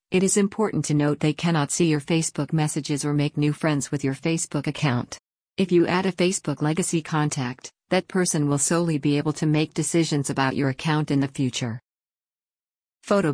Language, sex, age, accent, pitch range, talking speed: English, female, 50-69, American, 140-165 Hz, 190 wpm